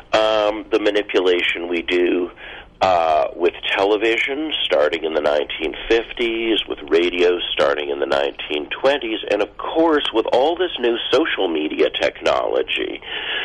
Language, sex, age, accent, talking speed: English, male, 50-69, American, 125 wpm